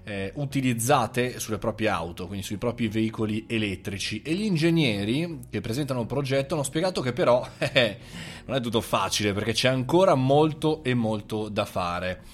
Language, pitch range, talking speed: Italian, 110-155 Hz, 165 wpm